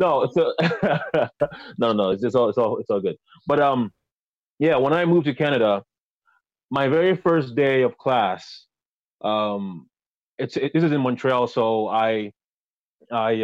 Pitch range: 120-170 Hz